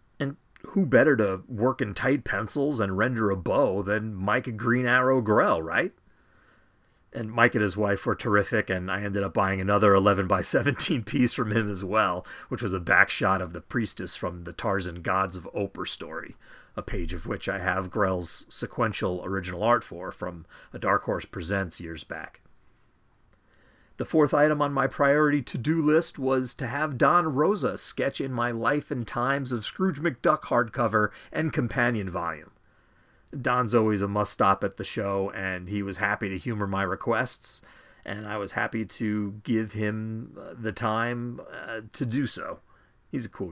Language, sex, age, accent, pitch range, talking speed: English, male, 40-59, American, 100-130 Hz, 175 wpm